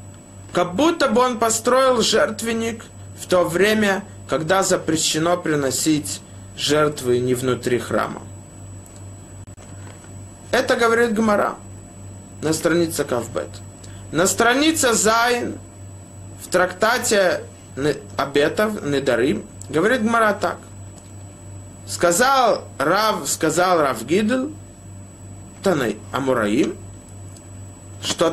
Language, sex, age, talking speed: Russian, male, 20-39, 85 wpm